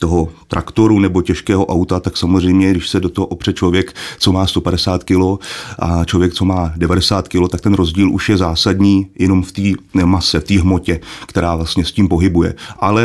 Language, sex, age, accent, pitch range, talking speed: Czech, male, 30-49, native, 90-100 Hz, 195 wpm